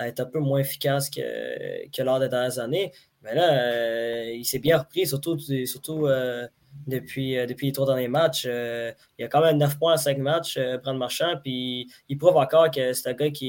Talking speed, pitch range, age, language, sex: 230 wpm, 130-150 Hz, 20-39, French, male